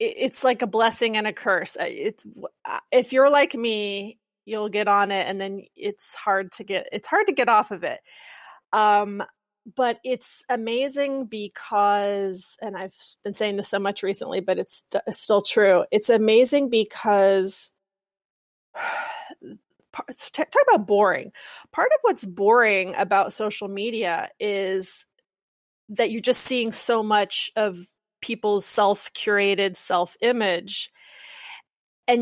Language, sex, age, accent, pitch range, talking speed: English, female, 30-49, American, 195-240 Hz, 135 wpm